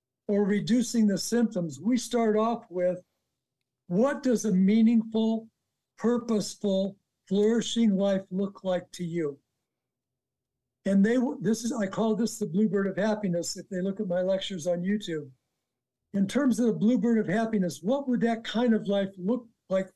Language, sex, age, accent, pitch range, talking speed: English, male, 60-79, American, 180-225 Hz, 160 wpm